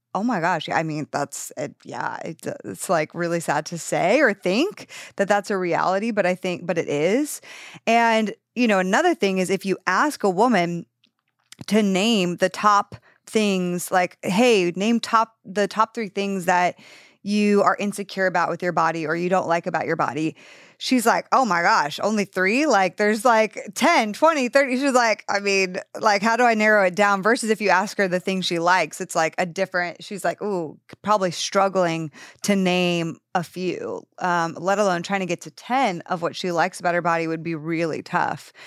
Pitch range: 170-215 Hz